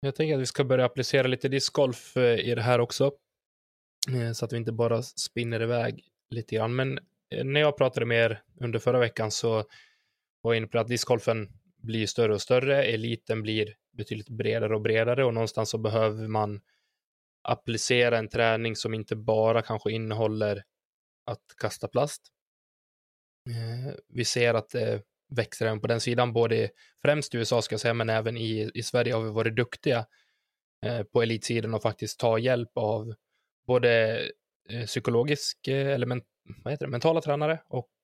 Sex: male